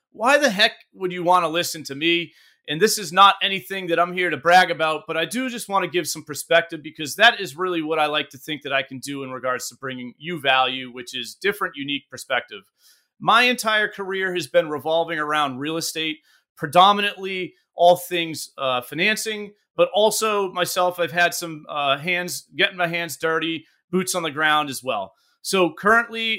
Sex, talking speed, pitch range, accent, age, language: male, 200 wpm, 155-190 Hz, American, 30-49, English